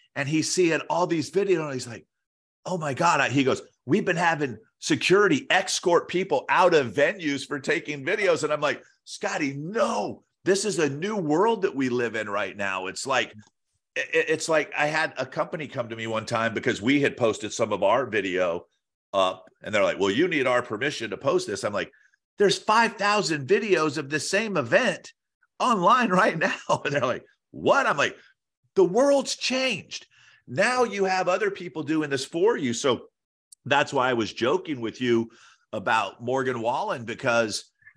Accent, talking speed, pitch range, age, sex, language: American, 185 wpm, 130-185 Hz, 50-69, male, English